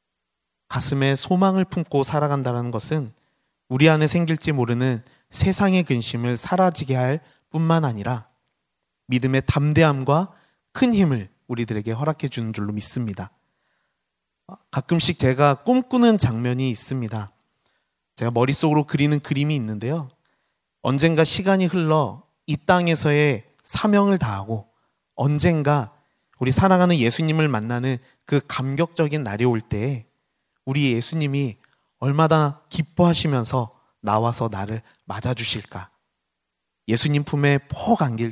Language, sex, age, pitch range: Korean, male, 30-49, 120-155 Hz